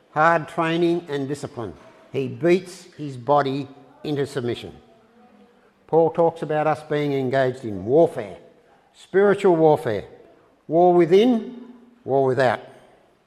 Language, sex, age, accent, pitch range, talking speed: English, male, 60-79, Australian, 135-175 Hz, 110 wpm